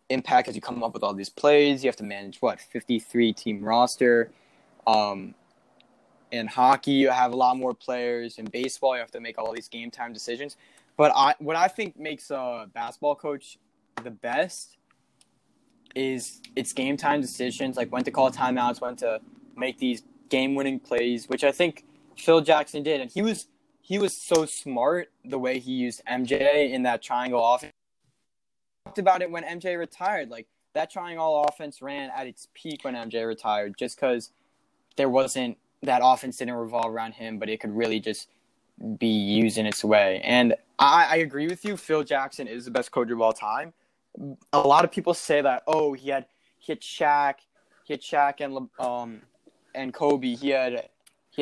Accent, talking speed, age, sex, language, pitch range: American, 185 wpm, 10-29, male, English, 120-150 Hz